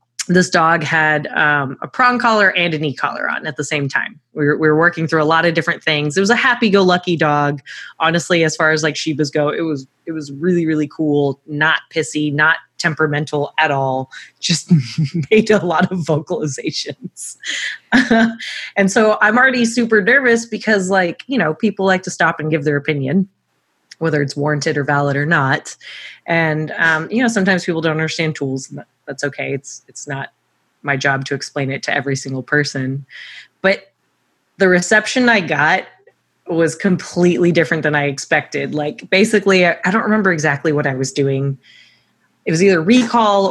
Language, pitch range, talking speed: English, 150-190 Hz, 185 wpm